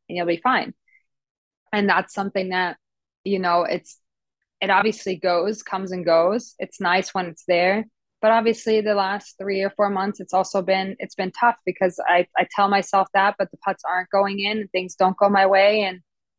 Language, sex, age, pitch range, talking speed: English, female, 20-39, 180-200 Hz, 200 wpm